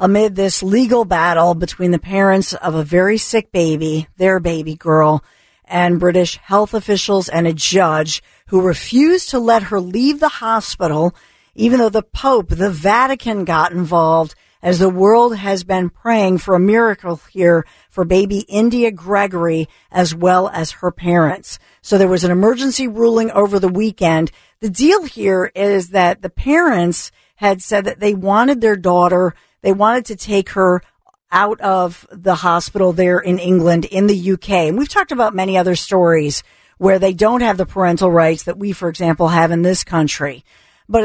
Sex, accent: female, American